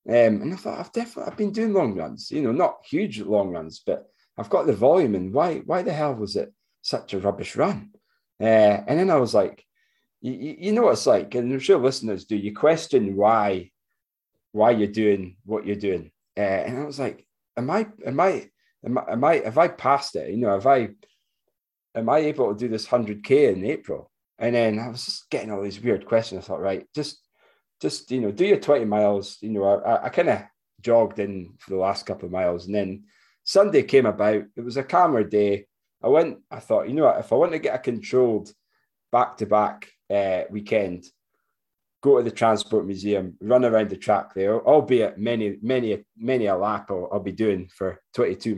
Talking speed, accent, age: 210 wpm, British, 30-49